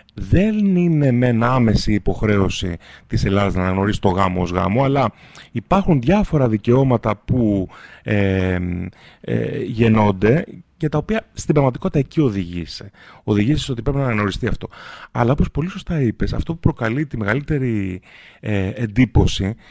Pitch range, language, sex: 105-155 Hz, Greek, male